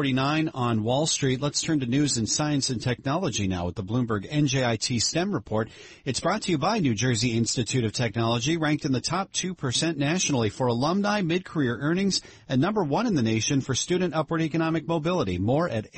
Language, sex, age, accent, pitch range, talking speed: English, male, 40-59, American, 115-165 Hz, 190 wpm